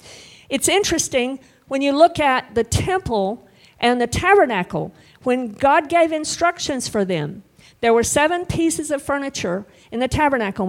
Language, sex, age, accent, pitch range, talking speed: English, female, 50-69, American, 210-290 Hz, 145 wpm